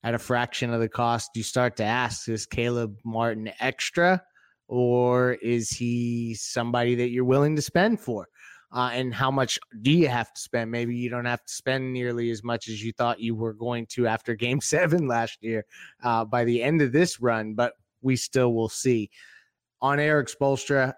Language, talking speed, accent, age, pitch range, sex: English, 195 wpm, American, 30-49, 115-130 Hz, male